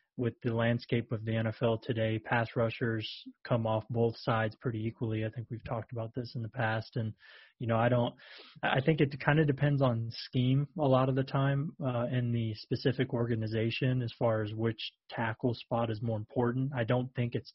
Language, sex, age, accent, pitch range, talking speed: English, male, 20-39, American, 115-130 Hz, 205 wpm